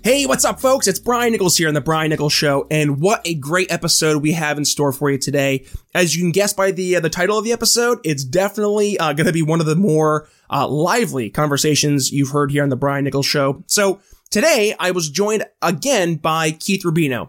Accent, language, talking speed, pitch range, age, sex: American, English, 235 wpm, 150-190 Hz, 20-39, male